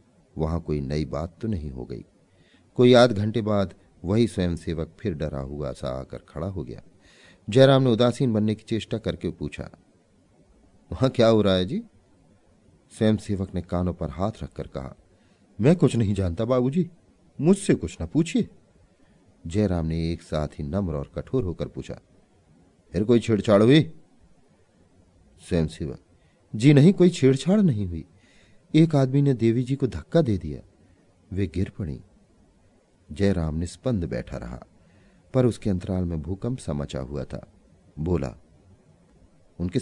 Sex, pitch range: male, 85-125 Hz